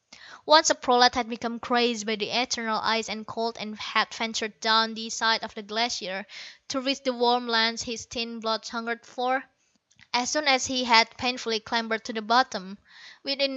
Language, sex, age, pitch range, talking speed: English, female, 20-39, 220-260 Hz, 185 wpm